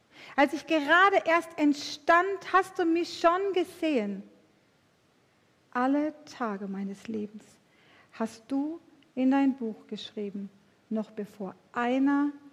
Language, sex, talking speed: German, female, 110 wpm